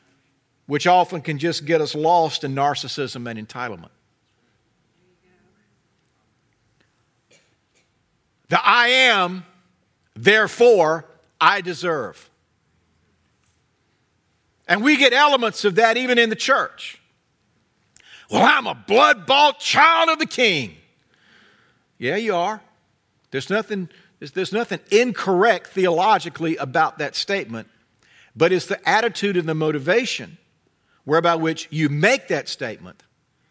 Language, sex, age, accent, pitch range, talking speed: English, male, 50-69, American, 150-255 Hz, 110 wpm